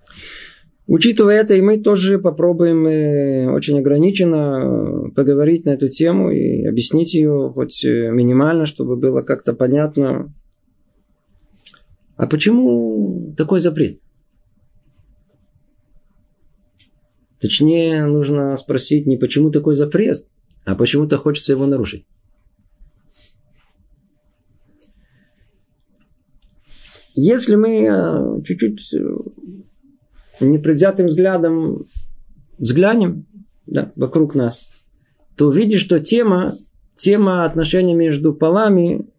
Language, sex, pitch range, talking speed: Russian, male, 135-175 Hz, 85 wpm